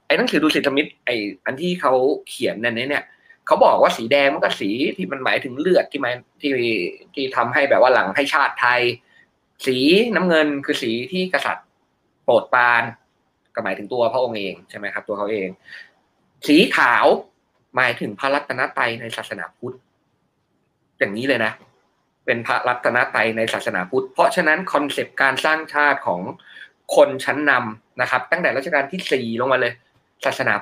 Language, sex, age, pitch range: Thai, male, 20-39, 120-155 Hz